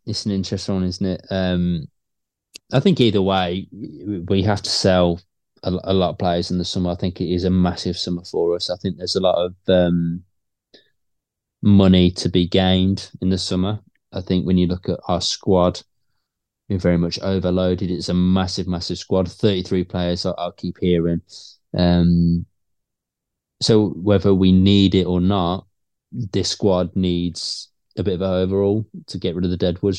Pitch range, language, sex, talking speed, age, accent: 90-100 Hz, English, male, 180 wpm, 20-39, British